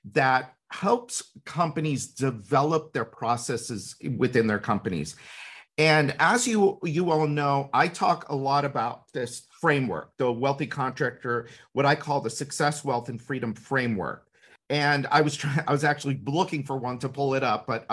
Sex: male